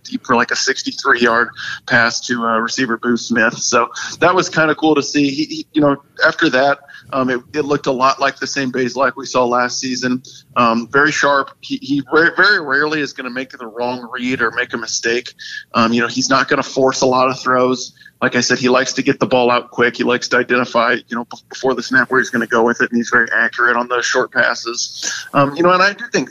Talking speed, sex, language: 255 wpm, male, English